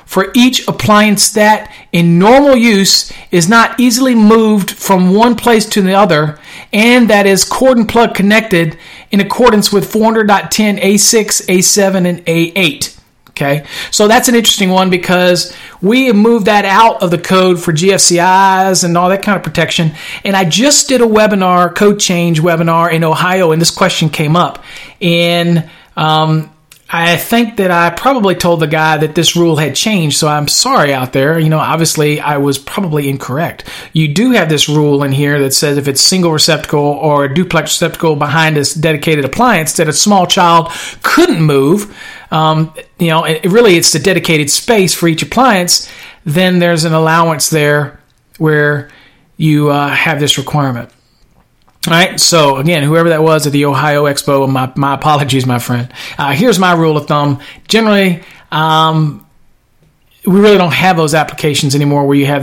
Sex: male